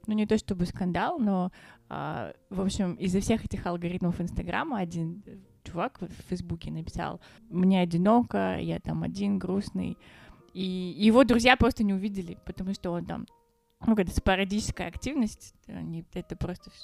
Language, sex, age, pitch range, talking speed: Russian, female, 20-39, 170-200 Hz, 150 wpm